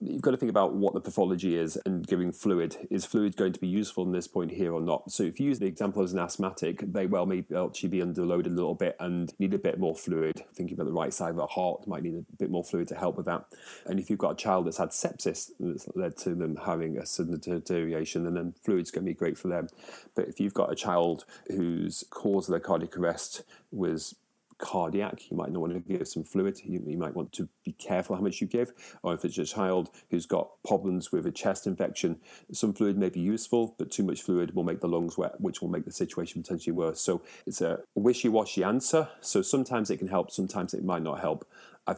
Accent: British